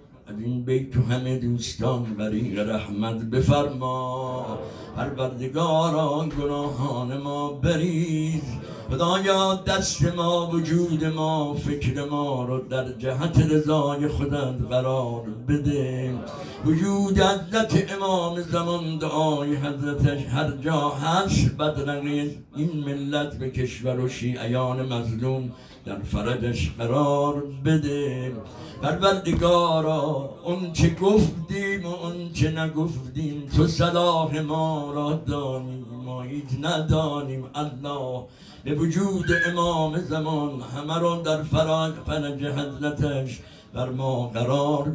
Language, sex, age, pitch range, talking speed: Persian, male, 60-79, 130-160 Hz, 105 wpm